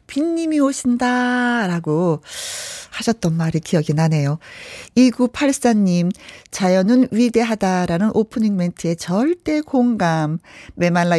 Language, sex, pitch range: Korean, female, 170-245 Hz